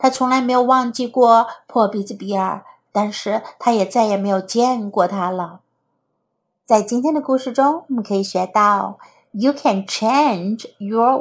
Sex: female